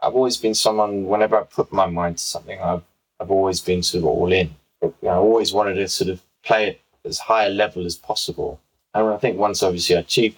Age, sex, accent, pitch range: 20-39, male, British, 90-105 Hz